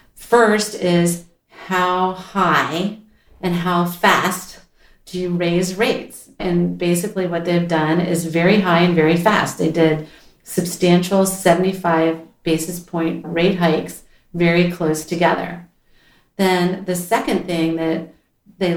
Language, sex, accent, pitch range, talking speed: English, female, American, 165-190 Hz, 125 wpm